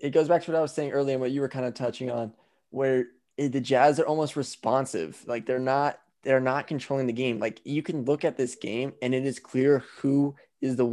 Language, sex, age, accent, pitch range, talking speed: English, male, 20-39, American, 120-140 Hz, 245 wpm